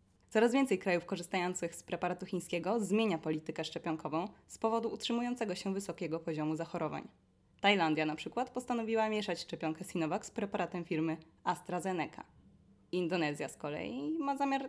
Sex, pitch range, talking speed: female, 160-205 Hz, 135 wpm